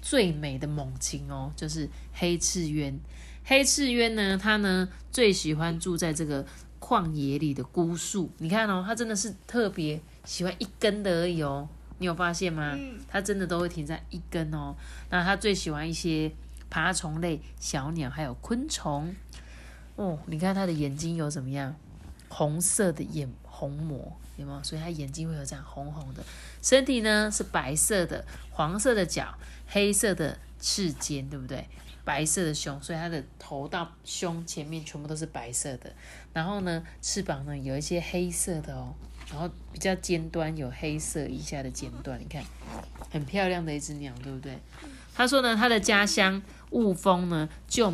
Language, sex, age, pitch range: Chinese, female, 30-49, 145-190 Hz